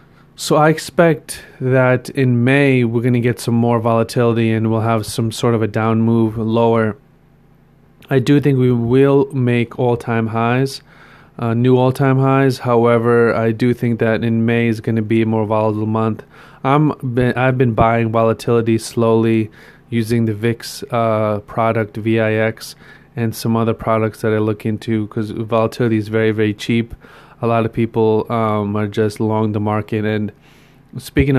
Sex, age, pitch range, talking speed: male, 30-49, 110-125 Hz, 175 wpm